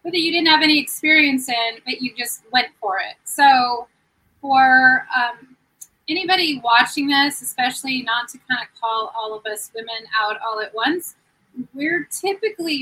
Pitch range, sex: 235-275 Hz, female